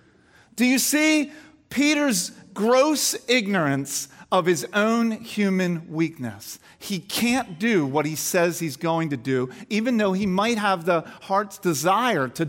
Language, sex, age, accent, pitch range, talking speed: English, male, 40-59, American, 180-245 Hz, 145 wpm